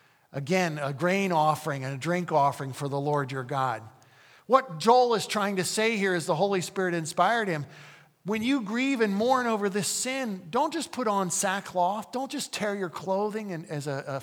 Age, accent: 50-69, American